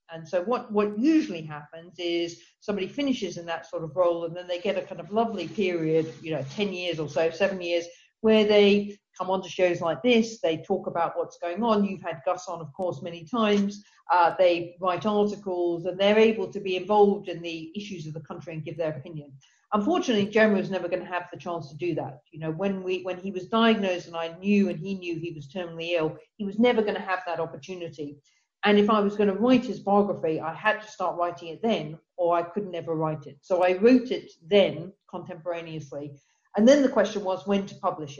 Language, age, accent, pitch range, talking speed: English, 50-69, British, 165-200 Hz, 230 wpm